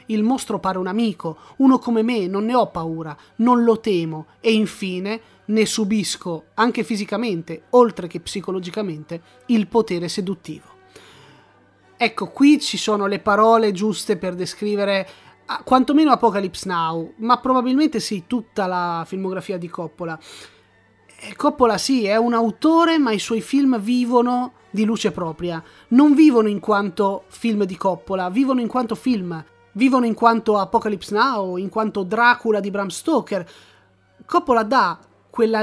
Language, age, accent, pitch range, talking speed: Italian, 30-49, native, 190-240 Hz, 145 wpm